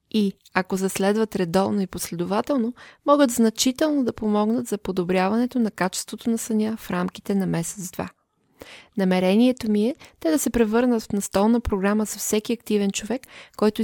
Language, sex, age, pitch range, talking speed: Bulgarian, female, 20-39, 190-230 Hz, 150 wpm